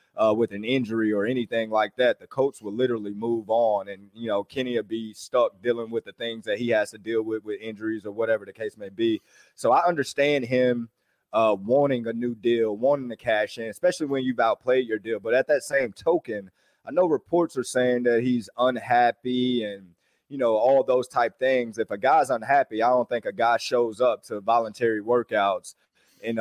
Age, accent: 20-39, American